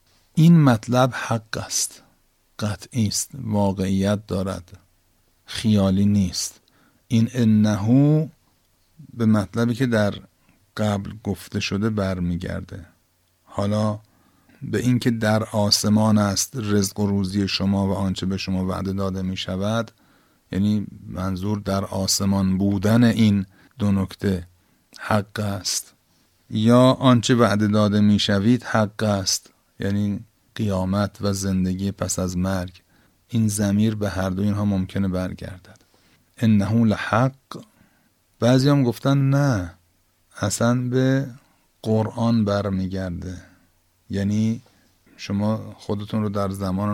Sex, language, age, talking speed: male, Persian, 50-69, 110 wpm